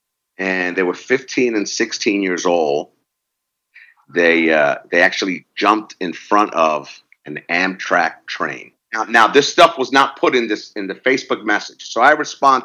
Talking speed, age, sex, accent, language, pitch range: 165 wpm, 50-69, male, American, English, 110-150 Hz